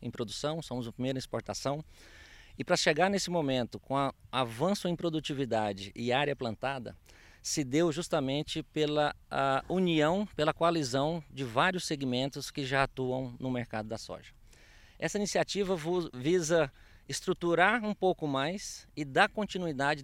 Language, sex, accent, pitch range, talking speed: Portuguese, male, Brazilian, 125-165 Hz, 145 wpm